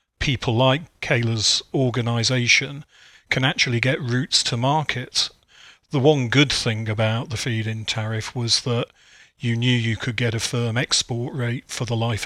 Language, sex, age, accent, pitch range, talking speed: English, male, 40-59, British, 120-140 Hz, 160 wpm